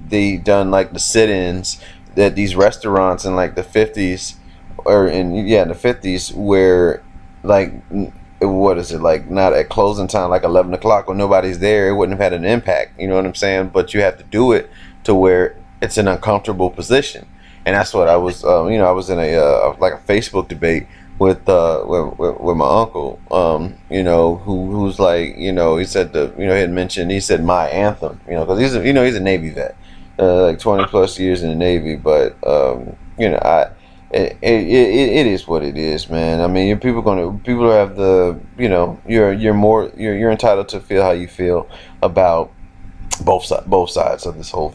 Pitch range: 85-100 Hz